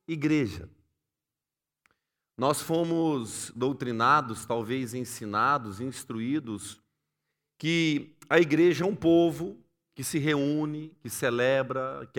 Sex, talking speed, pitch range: male, 95 wpm, 135-175 Hz